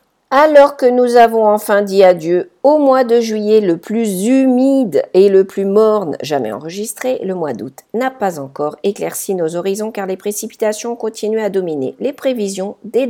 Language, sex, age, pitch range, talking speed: English, female, 50-69, 175-235 Hz, 175 wpm